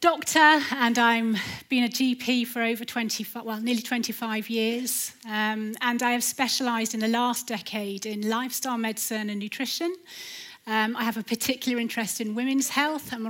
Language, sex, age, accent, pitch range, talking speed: English, female, 30-49, British, 225-265 Hz, 165 wpm